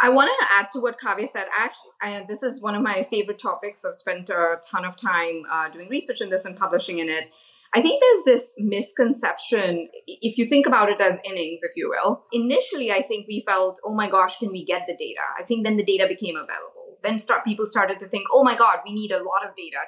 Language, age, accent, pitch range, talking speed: English, 20-39, Indian, 185-245 Hz, 240 wpm